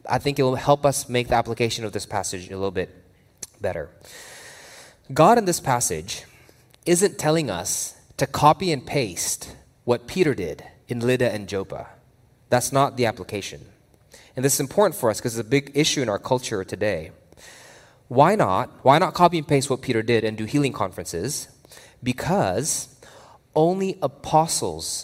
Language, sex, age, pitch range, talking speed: English, male, 20-39, 115-145 Hz, 170 wpm